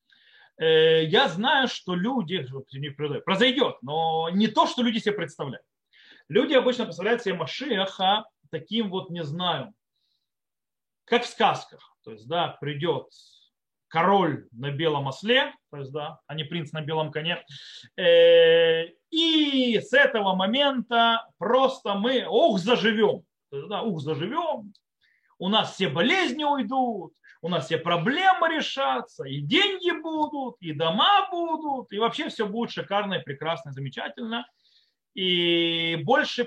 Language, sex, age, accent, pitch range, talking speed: Russian, male, 30-49, native, 165-265 Hz, 125 wpm